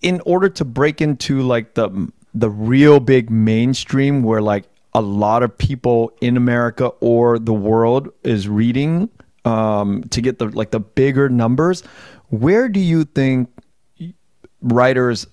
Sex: male